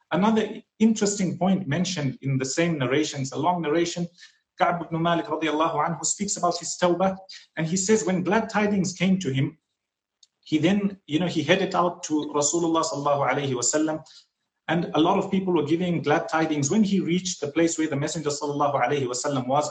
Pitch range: 150-195 Hz